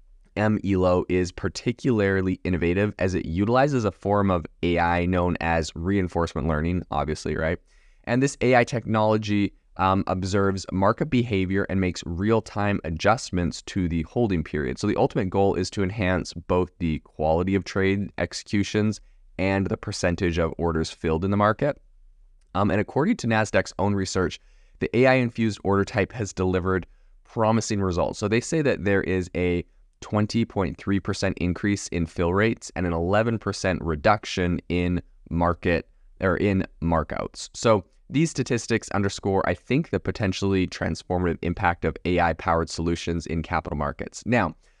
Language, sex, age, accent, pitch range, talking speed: English, male, 20-39, American, 85-105 Hz, 145 wpm